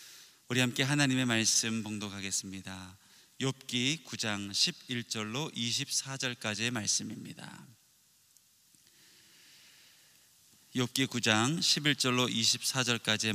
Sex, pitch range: male, 105-135 Hz